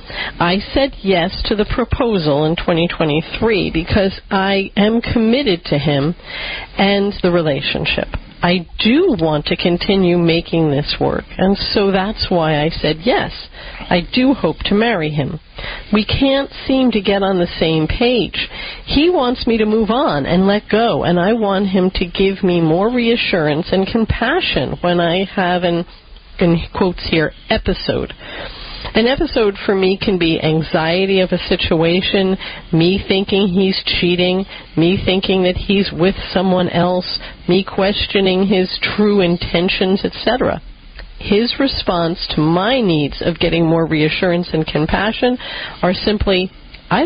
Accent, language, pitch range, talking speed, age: American, English, 170-210 Hz, 150 wpm, 50-69